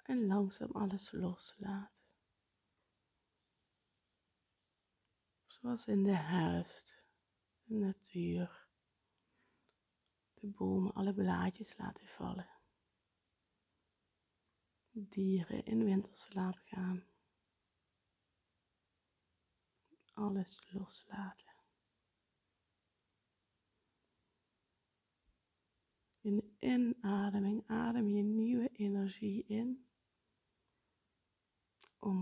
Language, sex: Dutch, female